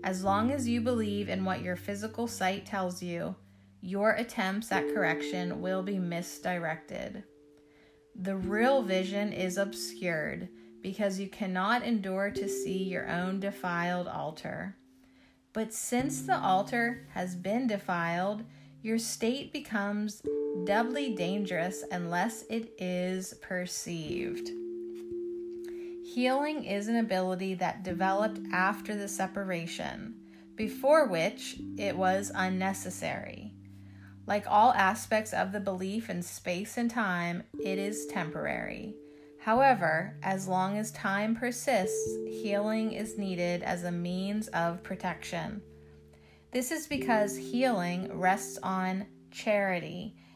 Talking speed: 115 wpm